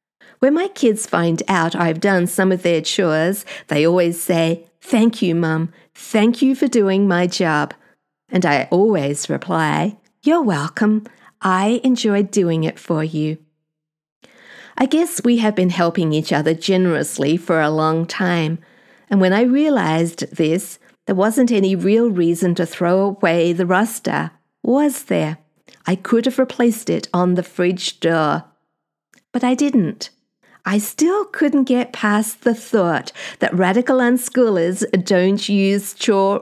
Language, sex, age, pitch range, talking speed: English, female, 50-69, 170-230 Hz, 150 wpm